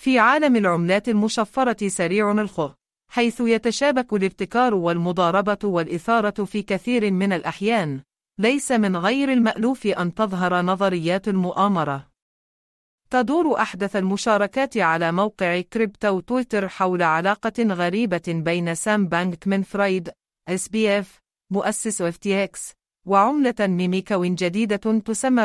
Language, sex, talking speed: English, female, 105 wpm